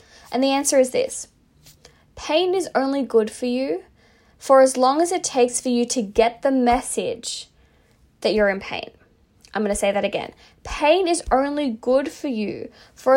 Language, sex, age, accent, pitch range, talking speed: English, female, 20-39, Australian, 225-275 Hz, 180 wpm